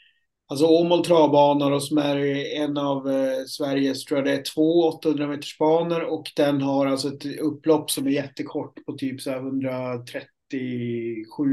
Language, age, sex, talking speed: Swedish, 30-49, male, 135 wpm